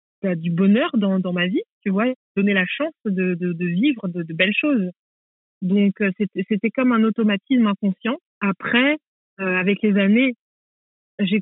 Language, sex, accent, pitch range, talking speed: French, female, French, 195-230 Hz, 175 wpm